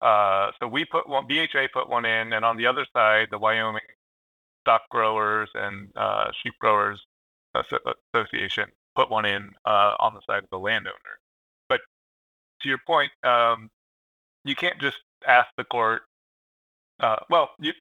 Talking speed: 160 wpm